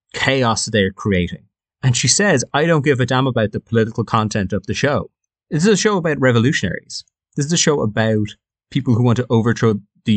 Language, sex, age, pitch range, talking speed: English, male, 30-49, 105-130 Hz, 205 wpm